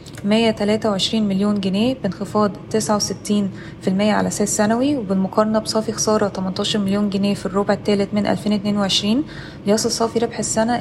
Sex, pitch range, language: female, 200-225 Hz, Arabic